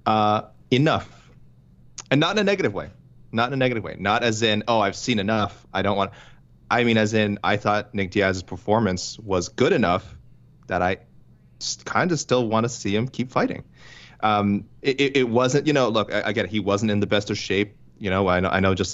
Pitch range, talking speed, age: 95-120 Hz, 230 wpm, 30-49